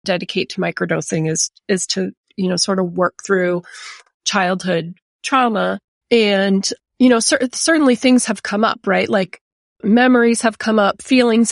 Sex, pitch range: female, 190-235 Hz